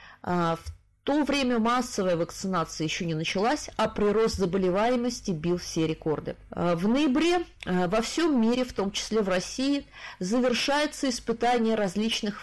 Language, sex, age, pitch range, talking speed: Russian, female, 30-49, 180-265 Hz, 130 wpm